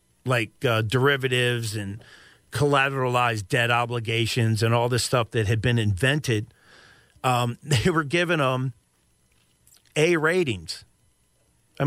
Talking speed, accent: 115 wpm, American